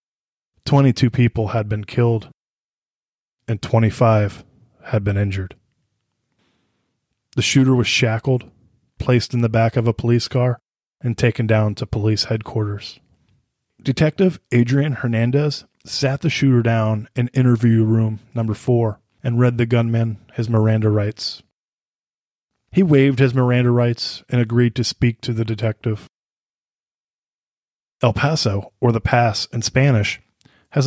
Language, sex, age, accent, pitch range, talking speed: English, male, 20-39, American, 110-130 Hz, 130 wpm